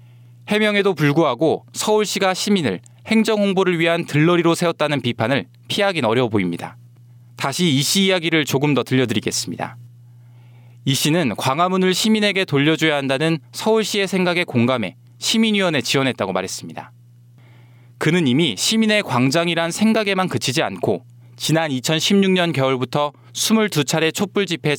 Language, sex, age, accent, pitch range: Korean, male, 20-39, native, 120-185 Hz